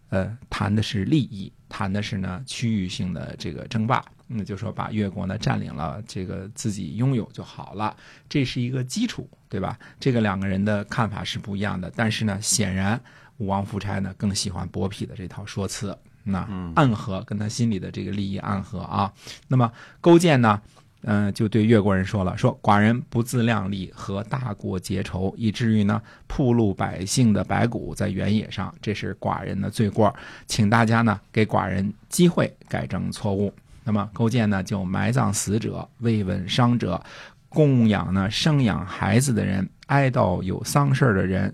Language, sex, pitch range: Chinese, male, 100-120 Hz